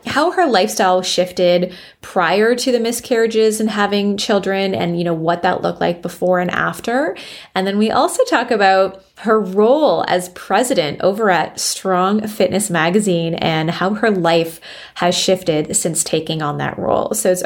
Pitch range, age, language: 175-220 Hz, 20-39, English